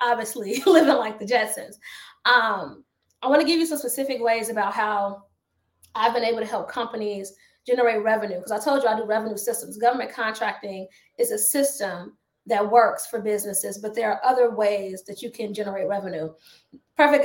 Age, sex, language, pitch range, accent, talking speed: 20-39, female, English, 210-250 Hz, American, 180 wpm